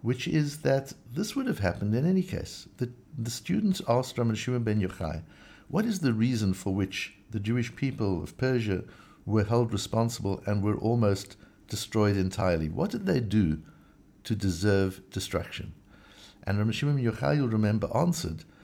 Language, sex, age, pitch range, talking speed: English, male, 60-79, 95-125 Hz, 160 wpm